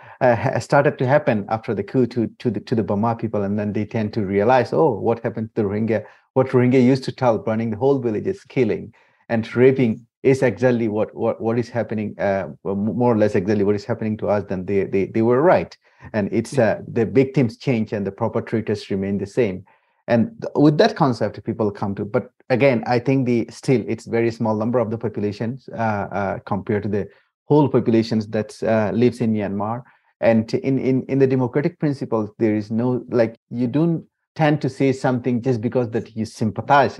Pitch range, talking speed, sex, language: 105-130 Hz, 210 wpm, male, English